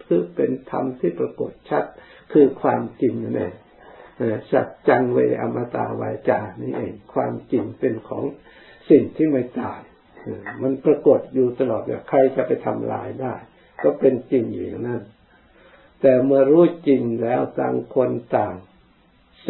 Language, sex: Thai, male